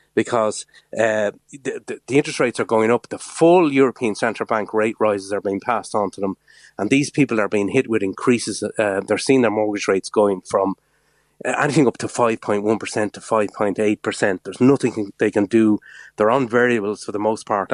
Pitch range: 105-125 Hz